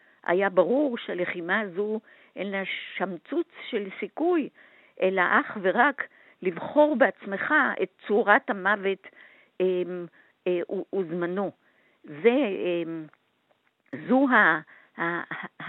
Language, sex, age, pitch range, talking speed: Hebrew, female, 50-69, 205-305 Hz, 90 wpm